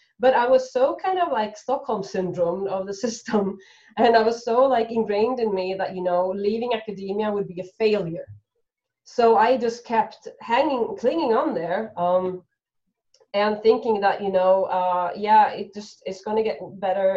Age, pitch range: 20-39, 175-220 Hz